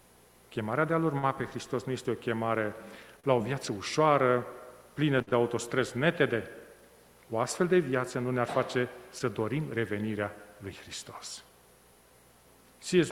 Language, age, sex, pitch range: Romanian, 40-59, male, 110-145 Hz